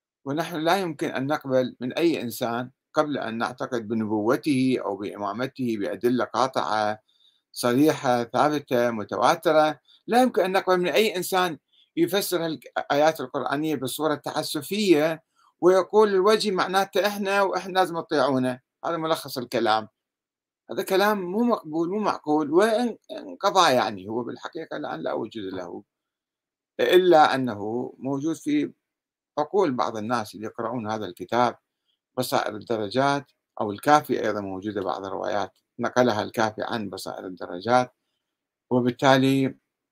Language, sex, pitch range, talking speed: Arabic, male, 120-165 Hz, 120 wpm